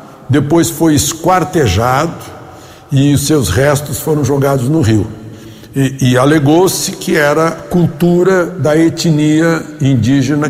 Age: 60-79